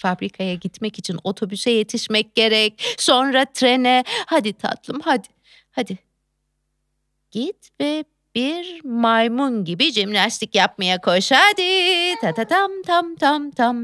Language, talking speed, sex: Turkish, 115 wpm, female